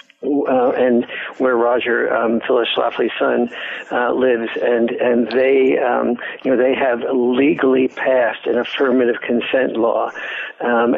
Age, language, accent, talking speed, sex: 60-79, English, American, 135 wpm, male